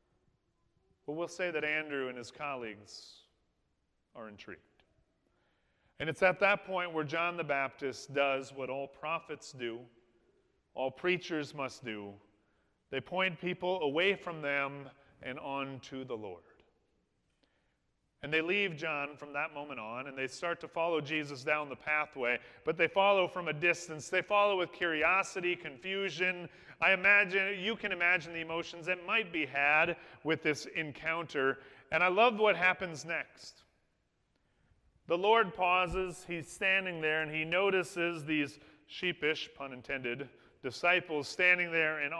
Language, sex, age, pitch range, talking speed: English, male, 40-59, 140-180 Hz, 150 wpm